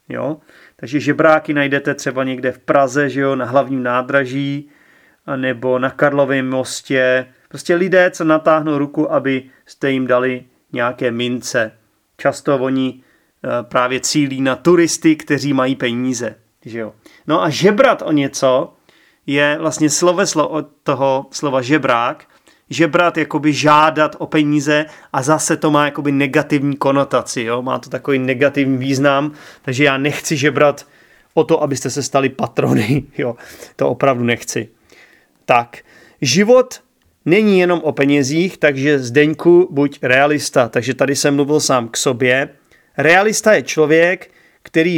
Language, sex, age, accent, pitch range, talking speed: Czech, male, 30-49, native, 130-155 Hz, 140 wpm